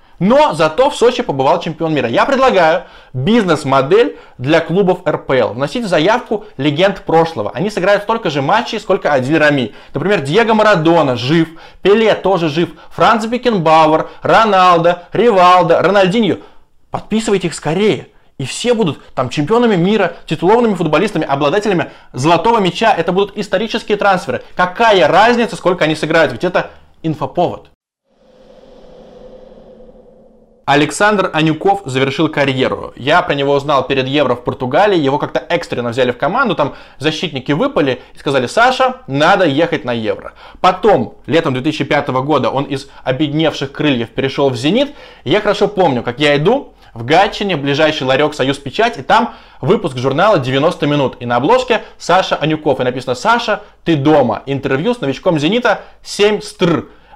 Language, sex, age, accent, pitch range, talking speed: Russian, male, 20-39, native, 145-210 Hz, 145 wpm